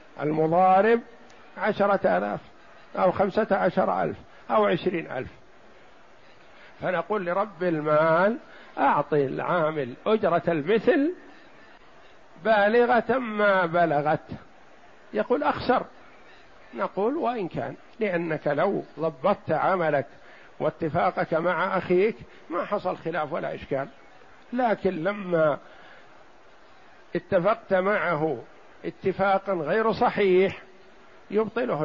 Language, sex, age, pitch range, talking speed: Arabic, male, 50-69, 170-215 Hz, 85 wpm